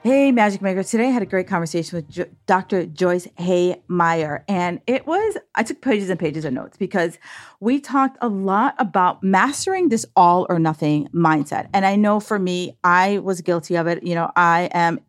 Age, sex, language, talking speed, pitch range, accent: 40-59, female, English, 195 wpm, 175-230 Hz, American